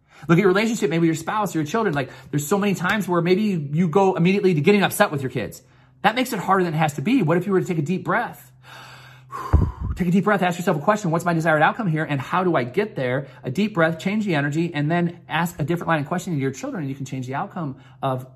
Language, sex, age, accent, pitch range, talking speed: English, male, 30-49, American, 130-175 Hz, 285 wpm